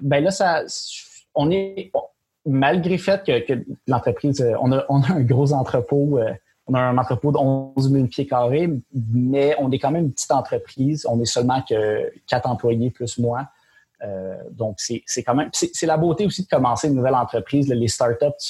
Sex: male